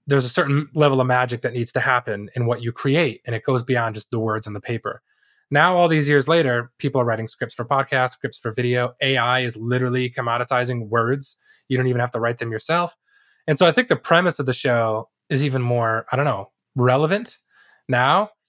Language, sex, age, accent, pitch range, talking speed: English, male, 20-39, American, 115-145 Hz, 220 wpm